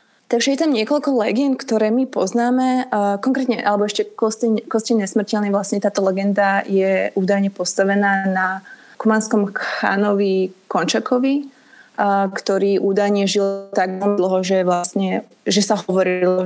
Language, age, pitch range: Slovak, 20-39, 185-220 Hz